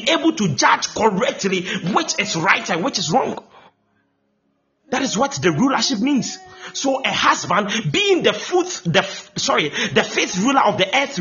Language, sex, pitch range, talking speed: English, male, 160-245 Hz, 165 wpm